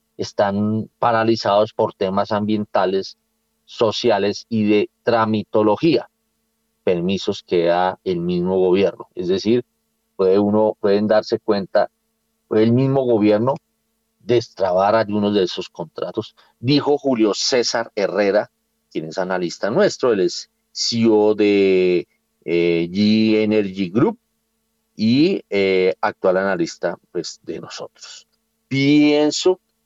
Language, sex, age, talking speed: Spanish, male, 40-59, 110 wpm